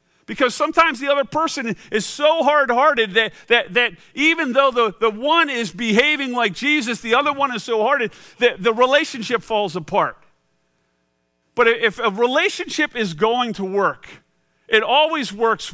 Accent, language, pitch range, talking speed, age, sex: American, English, 200-275 Hz, 160 wpm, 50-69, male